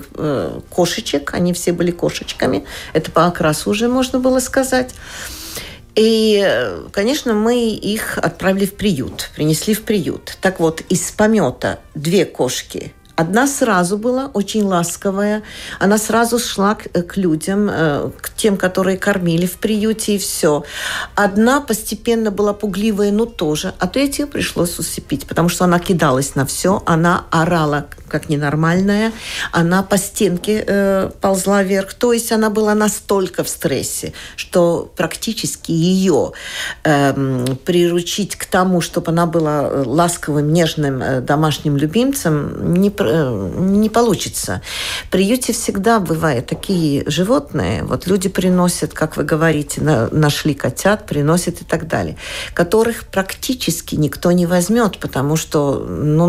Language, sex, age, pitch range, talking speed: Russian, female, 50-69, 160-215 Hz, 135 wpm